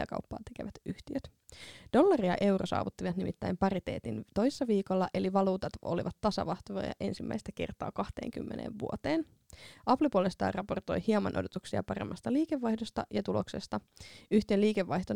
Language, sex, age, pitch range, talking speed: Finnish, female, 20-39, 190-265 Hz, 120 wpm